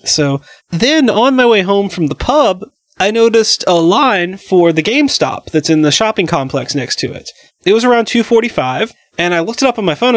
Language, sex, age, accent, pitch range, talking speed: English, male, 30-49, American, 150-215 Hz, 210 wpm